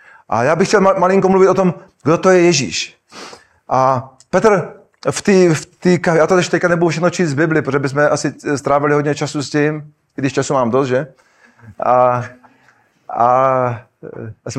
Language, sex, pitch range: Czech, male, 140-170 Hz